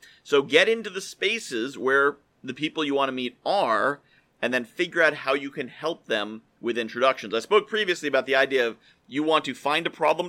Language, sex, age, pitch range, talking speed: English, male, 40-59, 135-200 Hz, 215 wpm